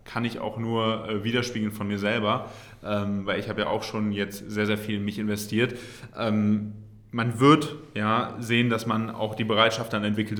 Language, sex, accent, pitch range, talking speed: German, male, German, 105-125 Hz, 185 wpm